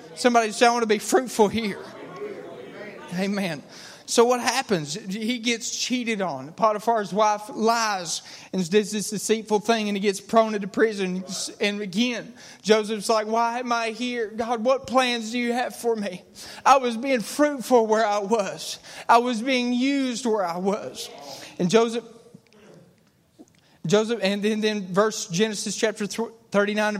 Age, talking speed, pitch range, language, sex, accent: 30-49, 160 wpm, 210-245 Hz, English, male, American